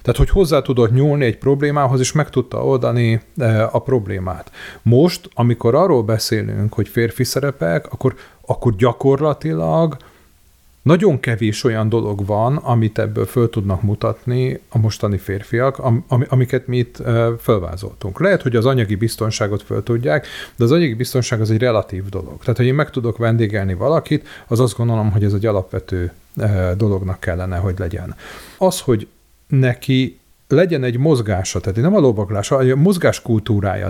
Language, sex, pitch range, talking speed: Hungarian, male, 105-135 Hz, 150 wpm